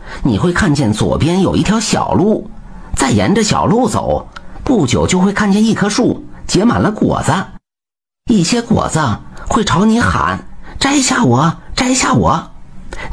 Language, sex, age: Chinese, male, 50-69